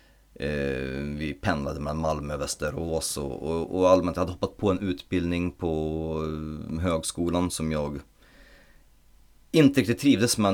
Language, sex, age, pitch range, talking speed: Swedish, male, 30-49, 75-95 Hz, 125 wpm